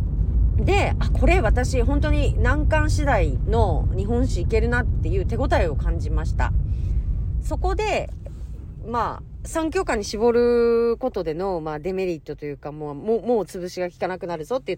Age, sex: 40-59, female